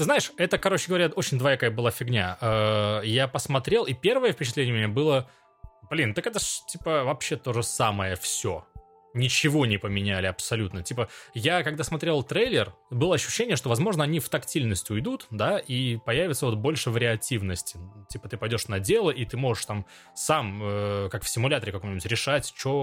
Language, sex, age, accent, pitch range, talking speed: Russian, male, 20-39, native, 105-155 Hz, 175 wpm